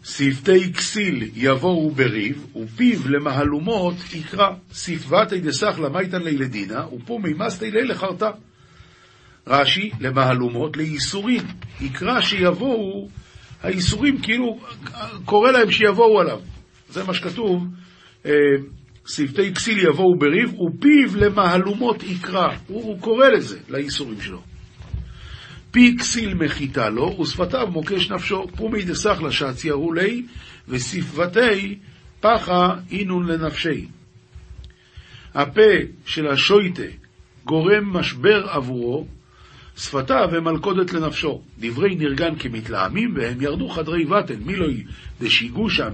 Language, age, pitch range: Hebrew, 50-69, 135-200 Hz